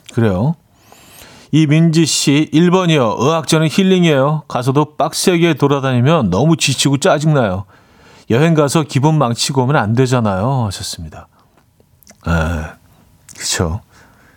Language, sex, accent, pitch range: Korean, male, native, 120-165 Hz